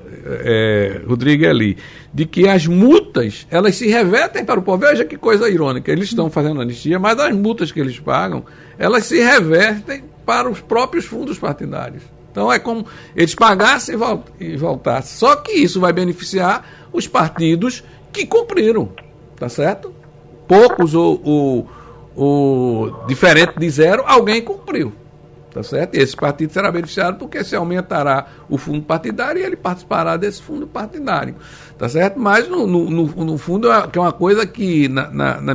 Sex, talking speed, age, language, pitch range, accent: male, 145 wpm, 60-79, Portuguese, 150-215 Hz, Brazilian